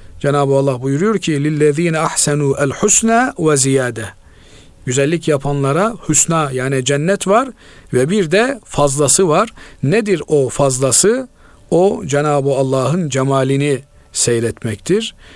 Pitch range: 130-165 Hz